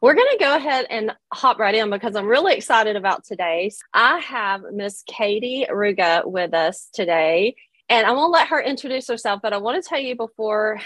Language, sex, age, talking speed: English, female, 30-49, 205 wpm